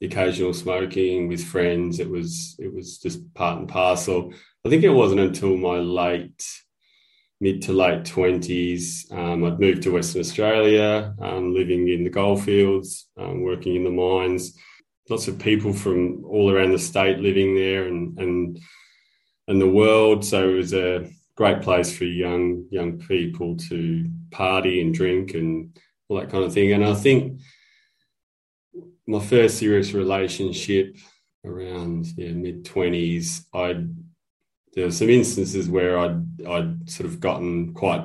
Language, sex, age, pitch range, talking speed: English, male, 20-39, 90-100 Hz, 155 wpm